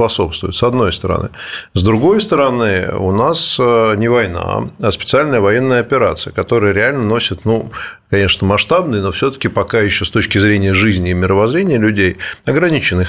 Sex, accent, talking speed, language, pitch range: male, native, 150 wpm, Russian, 95-120 Hz